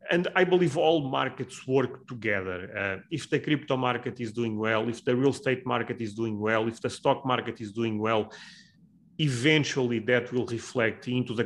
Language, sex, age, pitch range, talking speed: English, male, 30-49, 115-145 Hz, 190 wpm